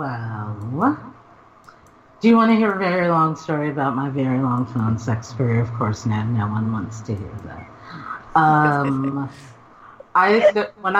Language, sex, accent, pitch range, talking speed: English, female, American, 125-150 Hz, 155 wpm